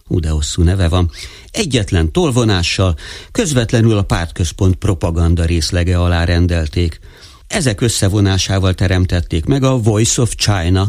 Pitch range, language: 85-105 Hz, Hungarian